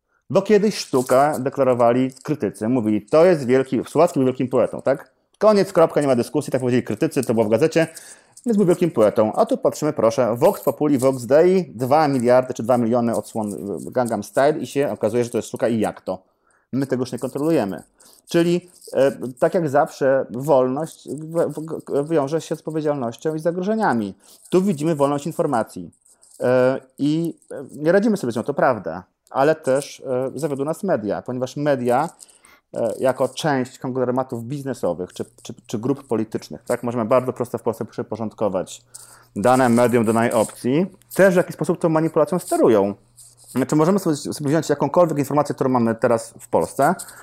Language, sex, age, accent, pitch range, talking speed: Polish, male, 30-49, native, 120-160 Hz, 170 wpm